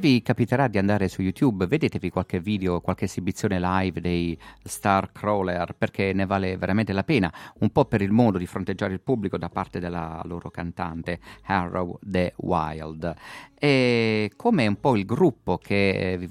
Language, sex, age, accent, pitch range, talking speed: Italian, male, 50-69, native, 90-105 Hz, 170 wpm